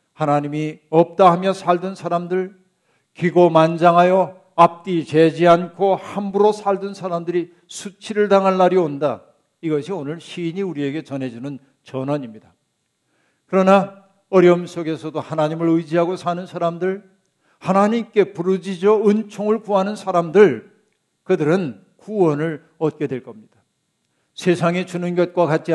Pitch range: 150-190 Hz